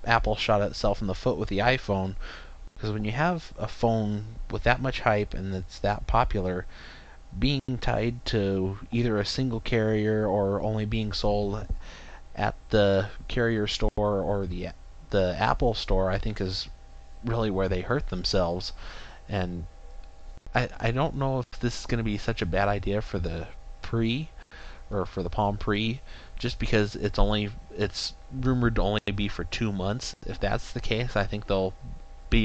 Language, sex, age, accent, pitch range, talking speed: English, male, 30-49, American, 90-110 Hz, 175 wpm